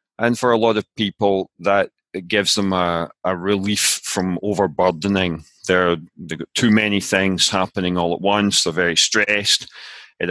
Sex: male